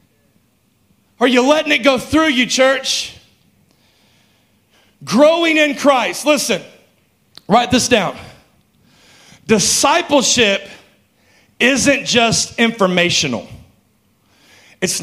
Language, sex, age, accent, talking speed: English, male, 40-59, American, 80 wpm